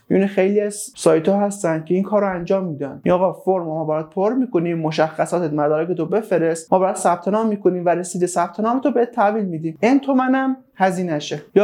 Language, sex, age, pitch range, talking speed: Persian, male, 30-49, 160-200 Hz, 185 wpm